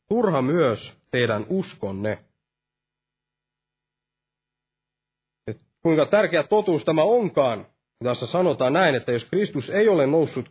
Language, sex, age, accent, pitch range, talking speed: Finnish, male, 30-49, native, 125-205 Hz, 110 wpm